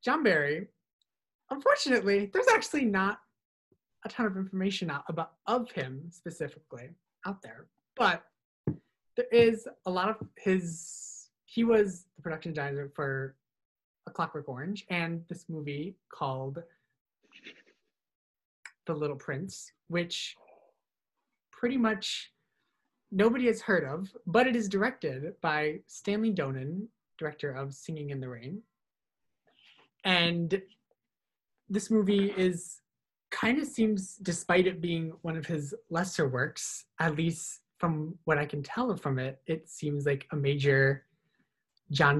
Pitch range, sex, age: 145-195 Hz, male, 30-49